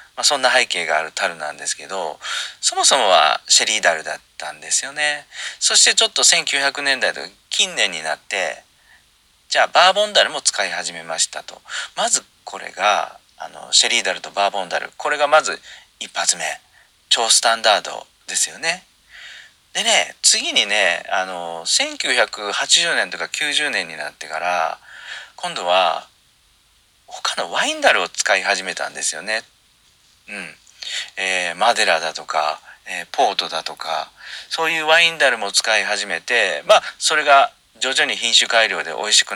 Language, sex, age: Japanese, male, 40-59